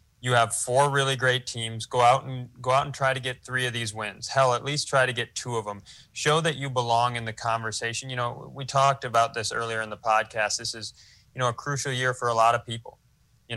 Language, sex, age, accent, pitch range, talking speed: English, male, 20-39, American, 115-135 Hz, 255 wpm